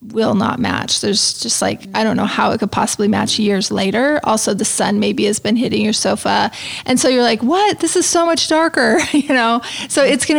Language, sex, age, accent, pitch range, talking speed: English, female, 20-39, American, 210-250 Hz, 230 wpm